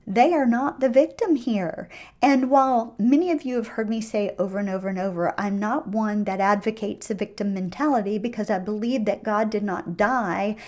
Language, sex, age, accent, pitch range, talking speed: English, female, 40-59, American, 195-260 Hz, 200 wpm